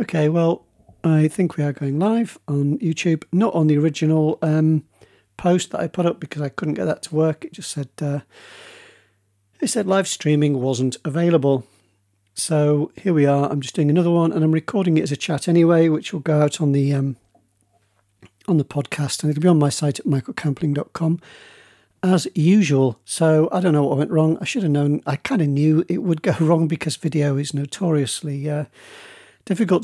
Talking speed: 205 wpm